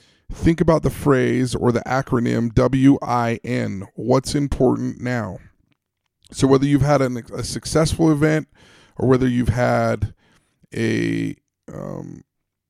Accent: American